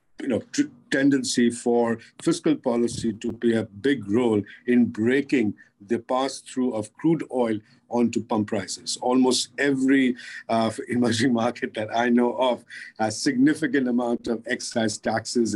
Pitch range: 115-135 Hz